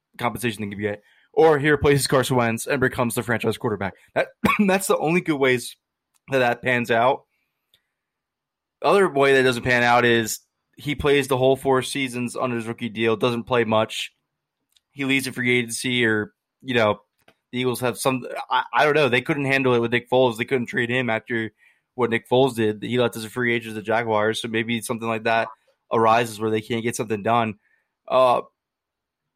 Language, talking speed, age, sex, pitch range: English, 200 wpm, 20-39, male, 115-135 Hz